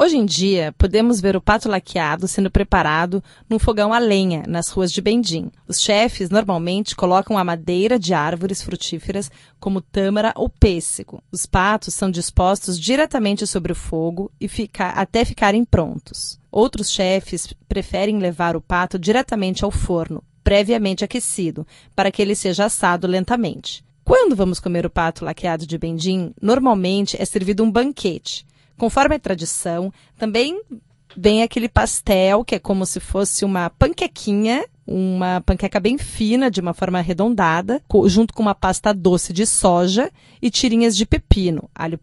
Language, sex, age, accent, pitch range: Chinese, female, 30-49, Brazilian, 180-225 Hz